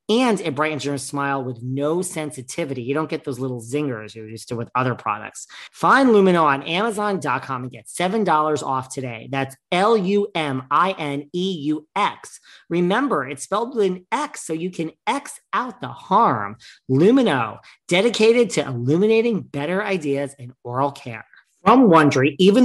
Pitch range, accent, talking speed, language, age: 135-190 Hz, American, 150 wpm, English, 40-59